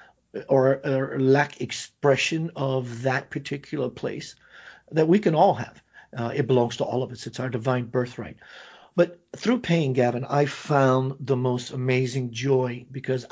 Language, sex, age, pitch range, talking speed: English, male, 50-69, 130-155 Hz, 160 wpm